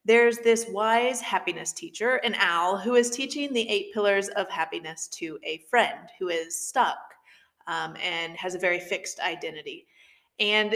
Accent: American